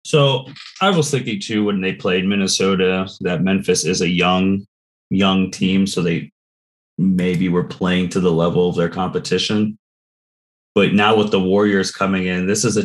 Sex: male